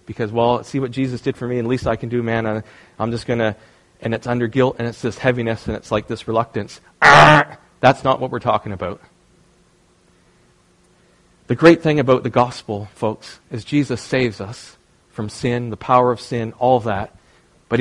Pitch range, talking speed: 125-170 Hz, 190 wpm